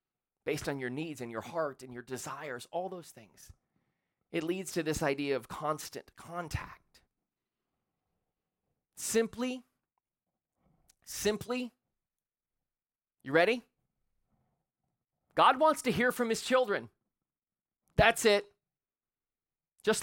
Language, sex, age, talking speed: English, male, 30-49, 105 wpm